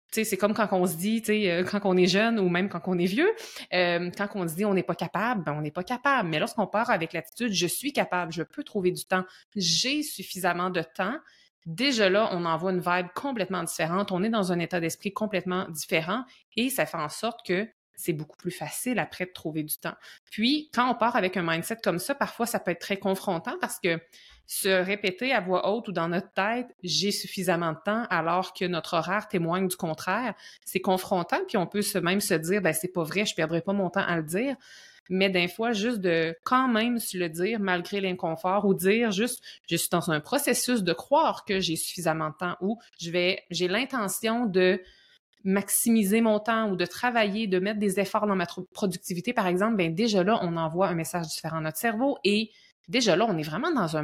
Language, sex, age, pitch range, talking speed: French, female, 30-49, 175-220 Hz, 235 wpm